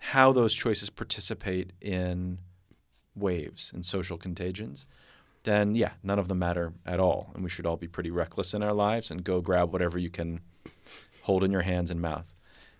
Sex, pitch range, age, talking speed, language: male, 90-105 Hz, 30-49, 185 wpm, English